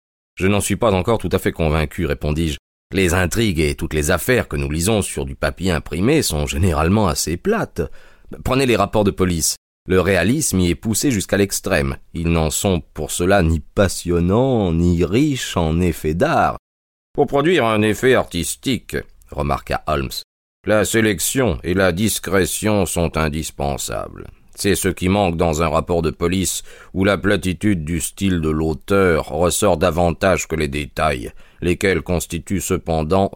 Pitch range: 80-100 Hz